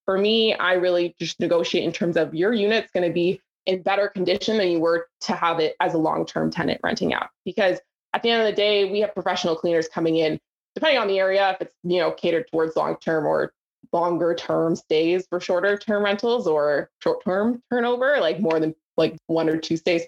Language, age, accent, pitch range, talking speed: English, 20-39, American, 170-210 Hz, 210 wpm